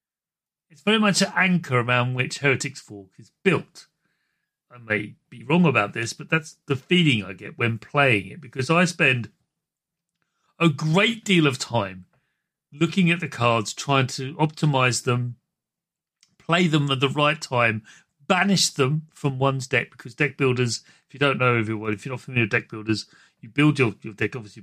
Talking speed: 180 wpm